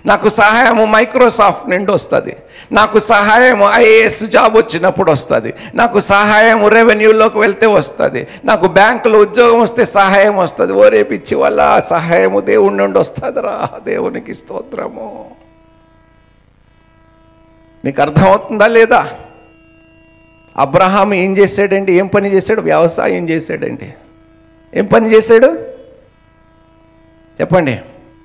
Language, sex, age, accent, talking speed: Telugu, male, 60-79, native, 100 wpm